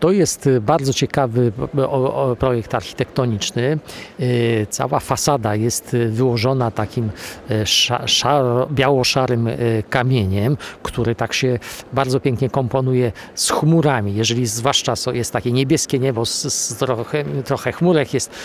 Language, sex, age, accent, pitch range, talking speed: Polish, male, 50-69, native, 115-140 Hz, 115 wpm